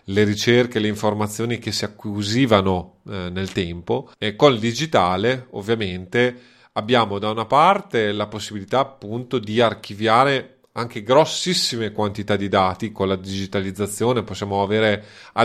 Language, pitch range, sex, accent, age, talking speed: Italian, 105-130 Hz, male, native, 30-49, 130 wpm